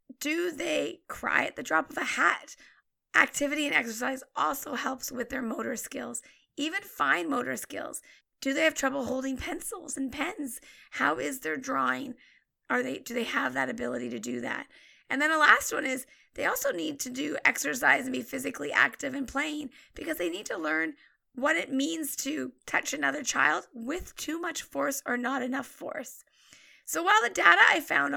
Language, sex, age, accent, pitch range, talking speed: English, female, 30-49, American, 255-300 Hz, 185 wpm